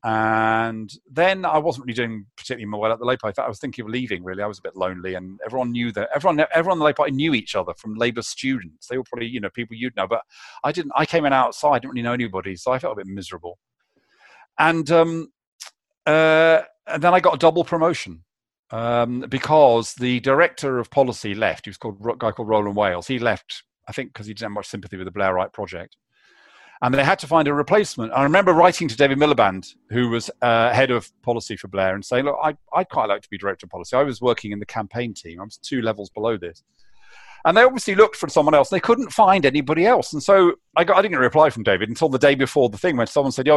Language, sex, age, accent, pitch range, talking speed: English, male, 40-59, British, 110-160 Hz, 250 wpm